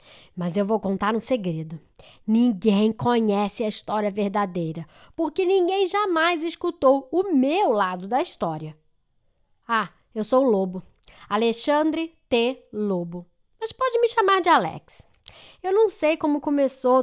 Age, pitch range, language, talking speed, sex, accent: 10-29, 215-345 Hz, Portuguese, 135 wpm, female, Brazilian